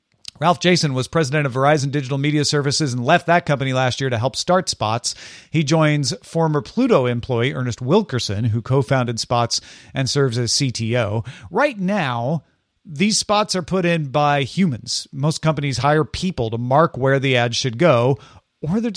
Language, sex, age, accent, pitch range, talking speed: English, male, 40-59, American, 130-175 Hz, 175 wpm